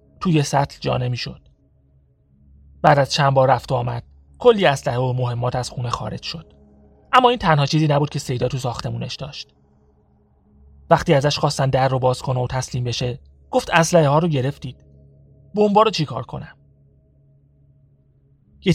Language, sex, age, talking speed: Persian, male, 30-49, 155 wpm